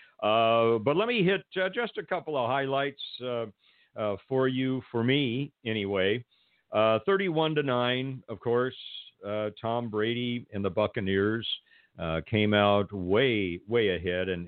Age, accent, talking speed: 50-69, American, 155 wpm